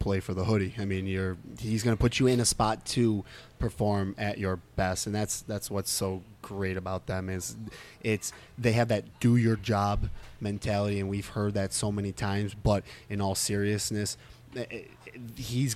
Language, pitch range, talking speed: English, 95-115 Hz, 185 wpm